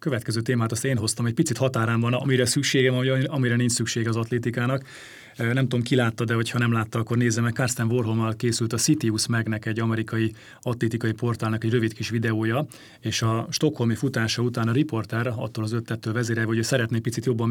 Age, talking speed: 30-49, 200 wpm